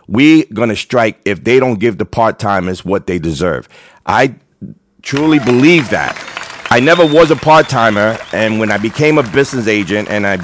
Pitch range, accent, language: 100-125 Hz, American, English